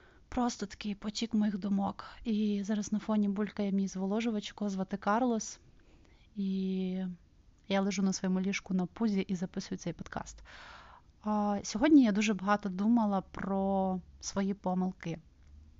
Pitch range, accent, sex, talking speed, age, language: 195-220 Hz, native, female, 130 wpm, 20-39, Ukrainian